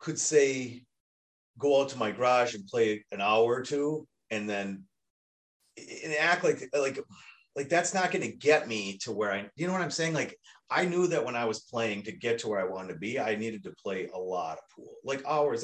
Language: English